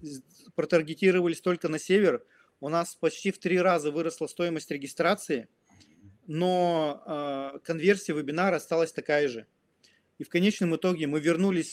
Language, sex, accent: Russian, male, native